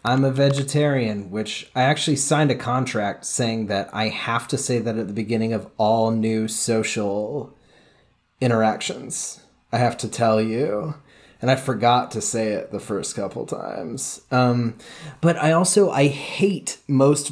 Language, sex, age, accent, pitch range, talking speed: English, male, 30-49, American, 110-140 Hz, 160 wpm